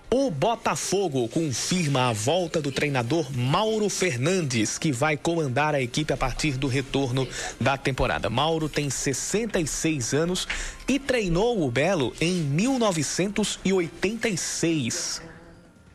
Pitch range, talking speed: 135-175 Hz, 115 wpm